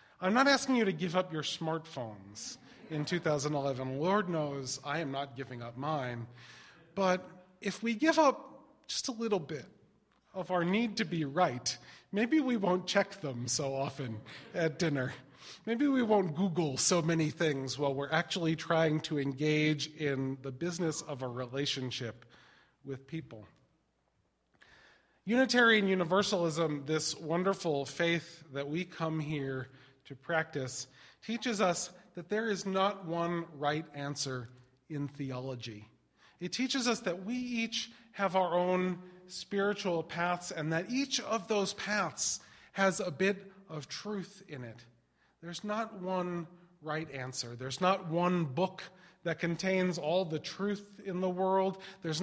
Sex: male